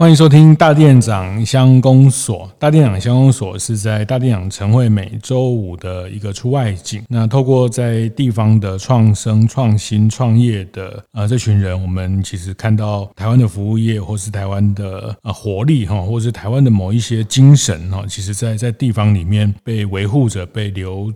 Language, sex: Chinese, male